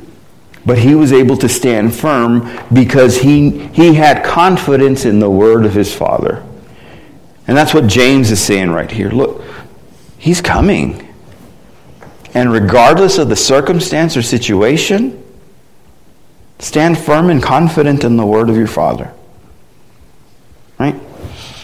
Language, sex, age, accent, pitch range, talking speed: English, male, 50-69, American, 110-145 Hz, 130 wpm